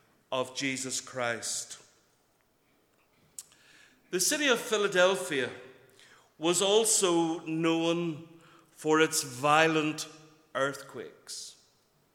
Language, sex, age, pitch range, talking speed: English, male, 60-79, 150-180 Hz, 70 wpm